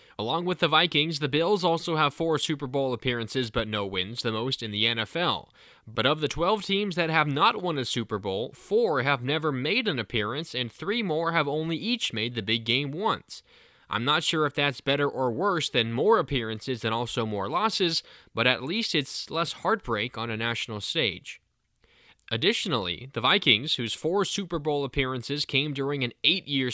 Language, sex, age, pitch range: English, male, 20-39, 120-160 Hz